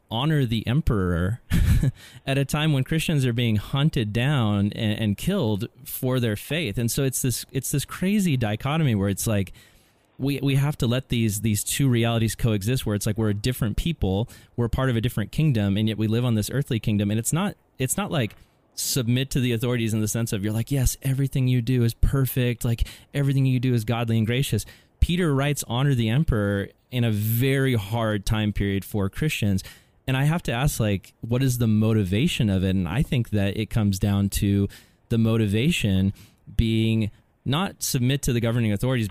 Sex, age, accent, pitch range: male, 20-39, American, 105-135 Hz